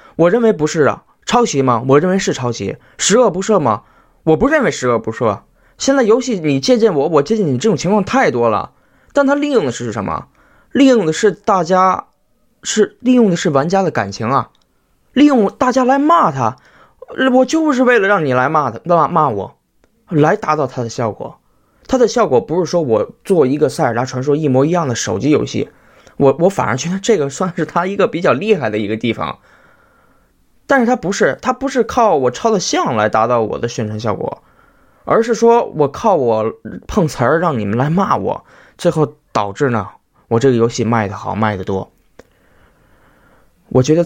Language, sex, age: Chinese, male, 20-39